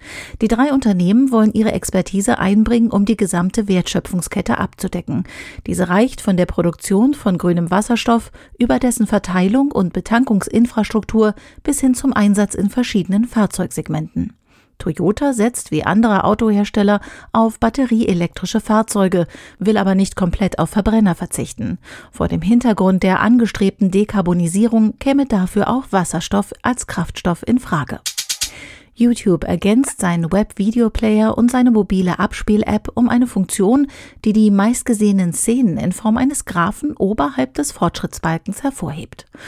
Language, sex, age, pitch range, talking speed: German, female, 40-59, 185-230 Hz, 130 wpm